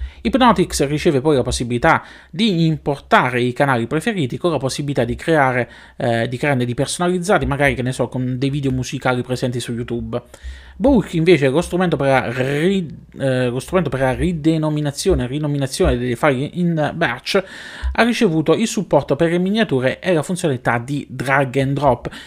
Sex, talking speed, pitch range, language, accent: male, 155 wpm, 125-175 Hz, Italian, native